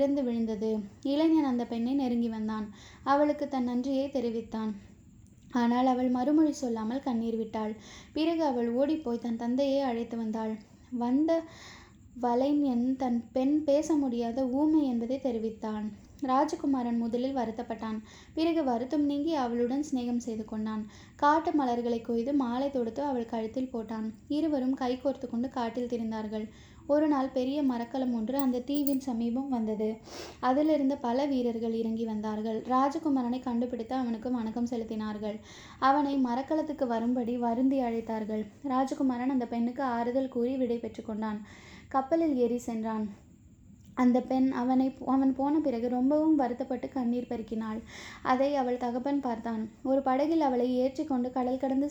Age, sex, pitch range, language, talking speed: 20-39, female, 235-275 Hz, Tamil, 110 wpm